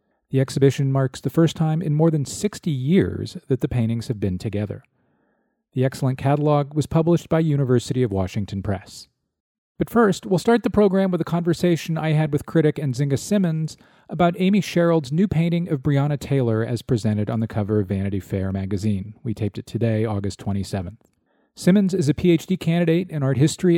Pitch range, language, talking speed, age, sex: 115-165 Hz, English, 185 wpm, 40-59, male